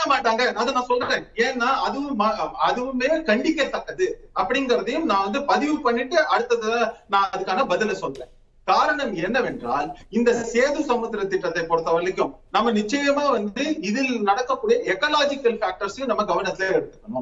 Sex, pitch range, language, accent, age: male, 190-270 Hz, Tamil, native, 30-49